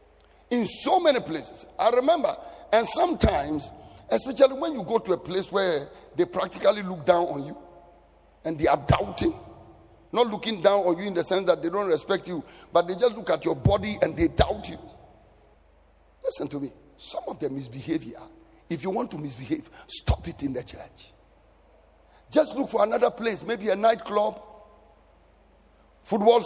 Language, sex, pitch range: English, male, 185-270 Hz